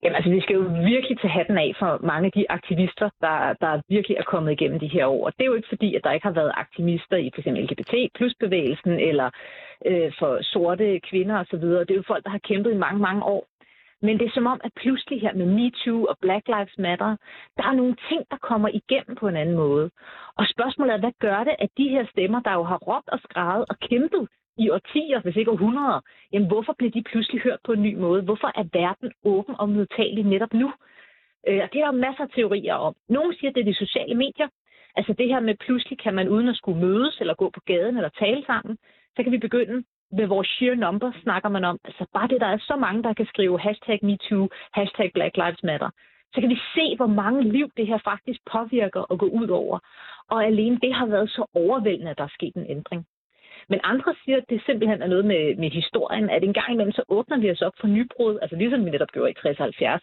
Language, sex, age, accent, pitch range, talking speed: Danish, female, 30-49, native, 185-245 Hz, 240 wpm